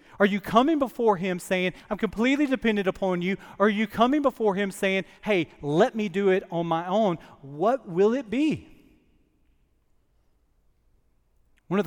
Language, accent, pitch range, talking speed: English, American, 155-200 Hz, 160 wpm